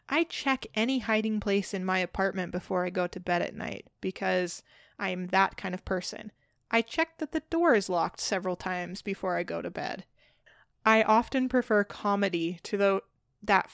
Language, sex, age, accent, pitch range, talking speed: English, female, 20-39, American, 185-225 Hz, 180 wpm